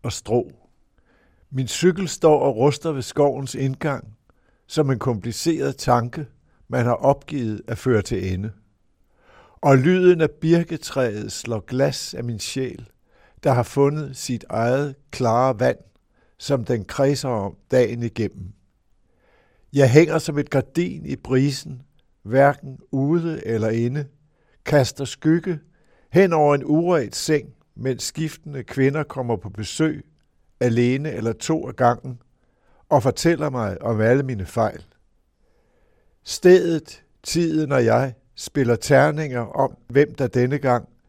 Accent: native